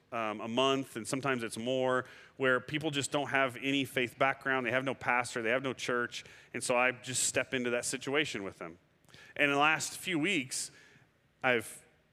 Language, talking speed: English, 200 wpm